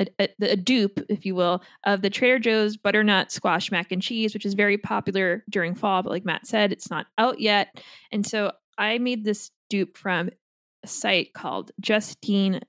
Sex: female